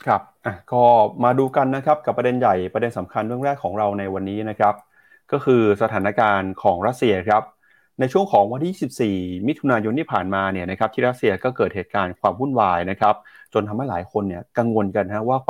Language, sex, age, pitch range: Thai, male, 30-49, 100-130 Hz